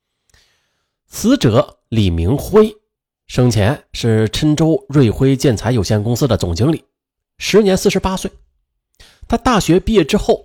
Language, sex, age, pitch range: Chinese, male, 30-49, 120-190 Hz